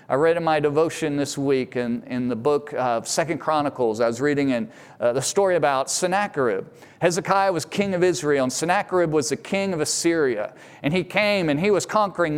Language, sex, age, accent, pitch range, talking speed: English, male, 40-59, American, 150-210 Hz, 200 wpm